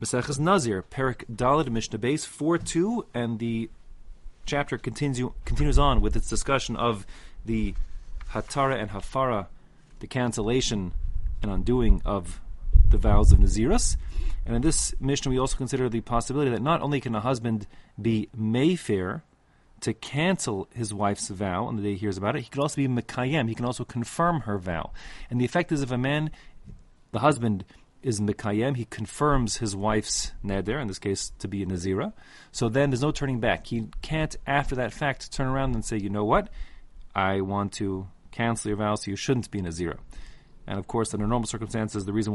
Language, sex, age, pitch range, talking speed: English, male, 30-49, 100-130 Hz, 190 wpm